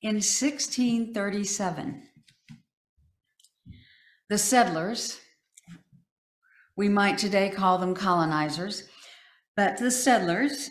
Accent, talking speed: American, 60 wpm